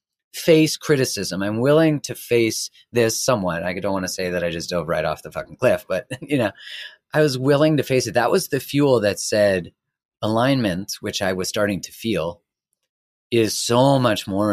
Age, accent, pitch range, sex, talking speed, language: 30-49, American, 100-130 Hz, male, 200 wpm, English